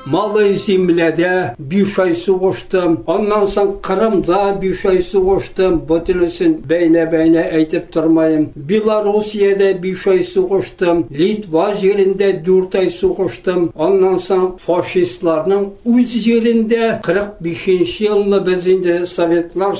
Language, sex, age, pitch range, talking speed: Russian, male, 60-79, 170-200 Hz, 60 wpm